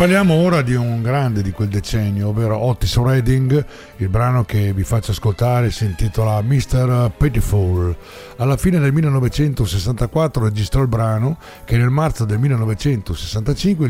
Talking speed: 145 wpm